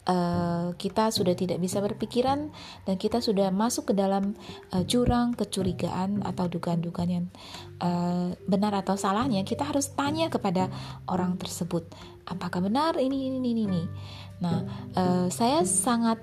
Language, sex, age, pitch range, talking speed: Indonesian, female, 20-39, 175-210 Hz, 140 wpm